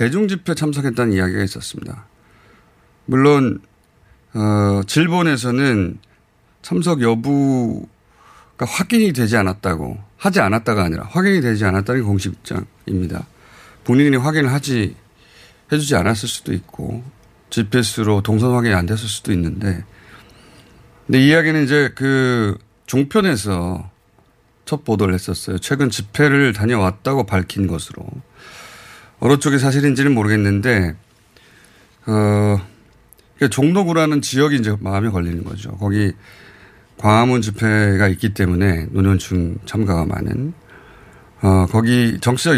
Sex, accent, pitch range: male, native, 100-130 Hz